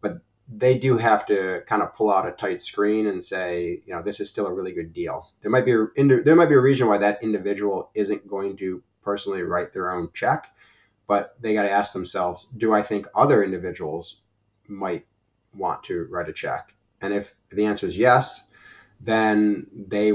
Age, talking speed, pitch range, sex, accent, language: 30-49, 190 wpm, 95-110 Hz, male, American, English